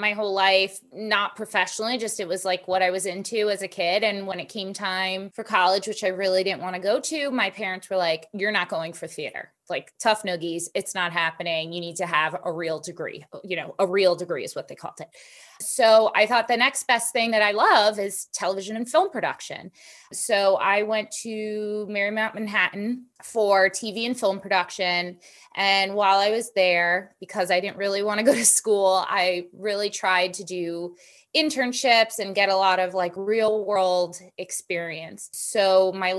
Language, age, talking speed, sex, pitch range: English, 20-39, 200 wpm, female, 185-220 Hz